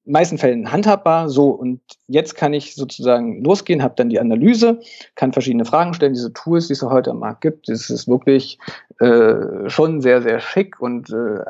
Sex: male